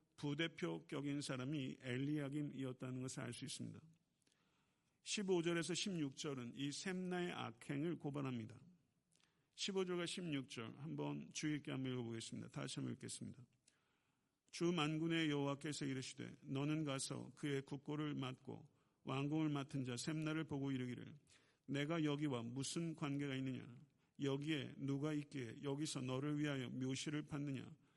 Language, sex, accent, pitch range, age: Korean, male, native, 135-160 Hz, 50-69